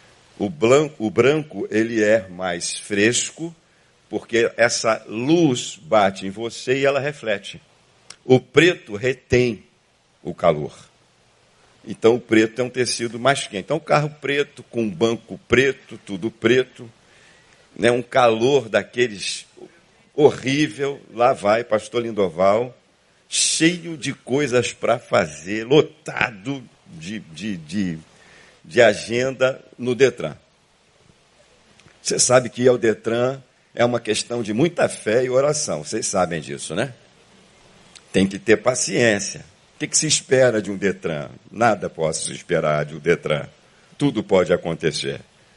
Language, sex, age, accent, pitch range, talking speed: Portuguese, male, 60-79, Brazilian, 110-140 Hz, 135 wpm